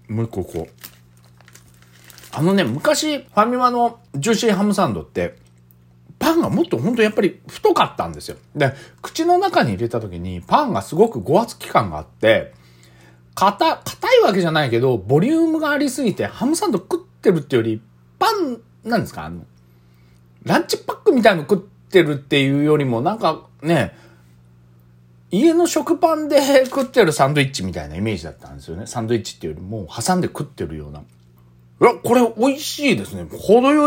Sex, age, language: male, 40-59, Japanese